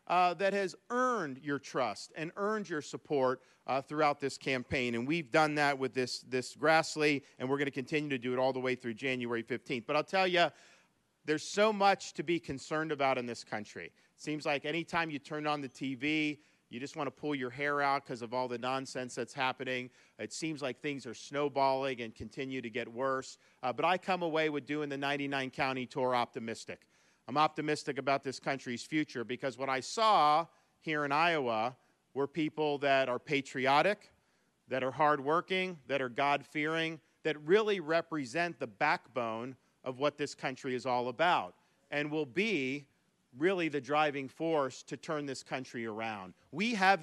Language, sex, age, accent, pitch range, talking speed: English, male, 50-69, American, 130-155 Hz, 185 wpm